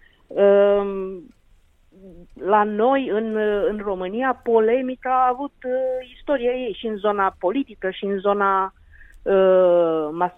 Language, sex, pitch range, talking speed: Romanian, female, 170-225 Hz, 105 wpm